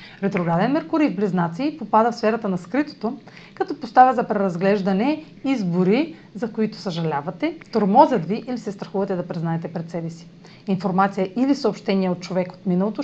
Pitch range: 180-235 Hz